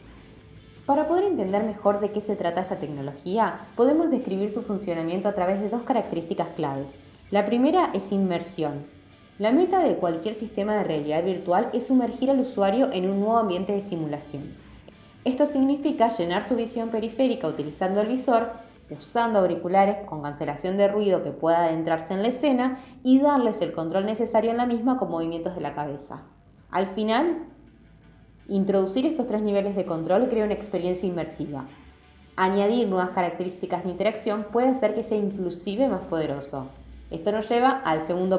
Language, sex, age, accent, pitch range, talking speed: Spanish, female, 20-39, Argentinian, 170-225 Hz, 165 wpm